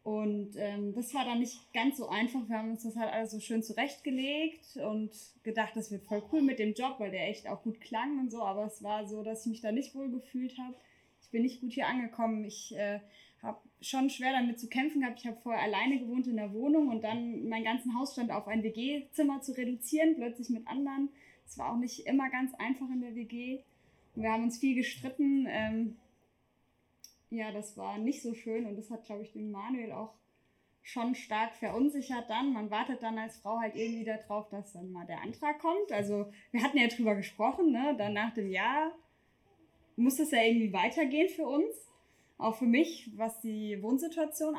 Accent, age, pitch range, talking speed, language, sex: German, 20-39, 220-265 Hz, 210 wpm, German, female